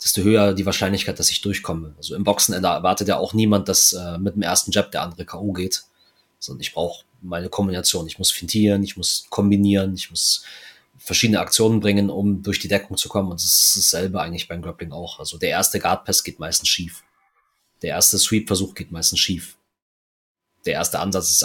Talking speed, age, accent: 205 wpm, 30-49, German